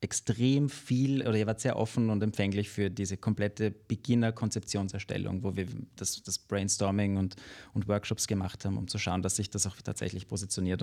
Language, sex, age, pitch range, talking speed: German, male, 30-49, 95-120 Hz, 175 wpm